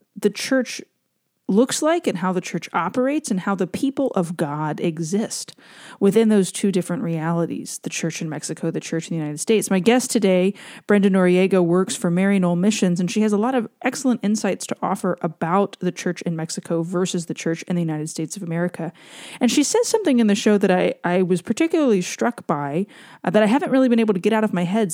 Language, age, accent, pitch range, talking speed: English, 30-49, American, 175-225 Hz, 220 wpm